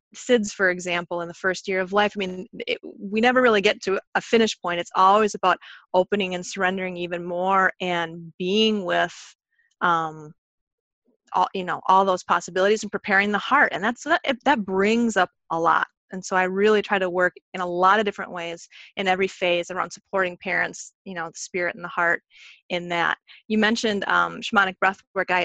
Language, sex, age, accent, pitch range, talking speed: English, female, 30-49, American, 175-195 Hz, 200 wpm